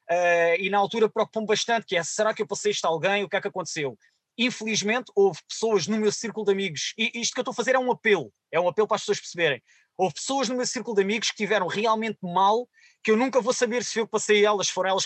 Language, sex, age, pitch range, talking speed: Portuguese, male, 20-39, 185-220 Hz, 270 wpm